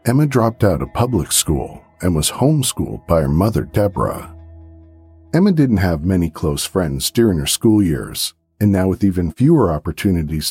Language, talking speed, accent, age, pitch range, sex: English, 165 wpm, American, 50-69, 80-125 Hz, male